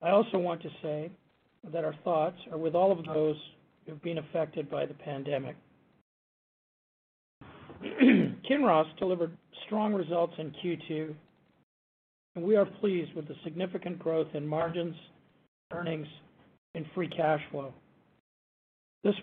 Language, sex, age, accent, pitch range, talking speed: English, male, 50-69, American, 155-185 Hz, 130 wpm